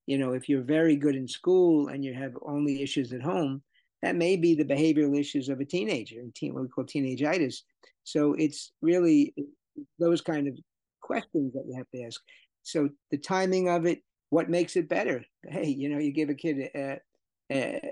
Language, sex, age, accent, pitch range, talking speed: English, male, 50-69, American, 130-150 Hz, 200 wpm